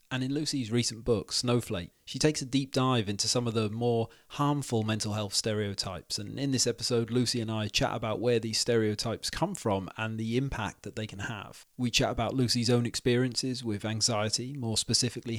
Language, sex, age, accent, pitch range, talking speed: English, male, 30-49, British, 110-130 Hz, 200 wpm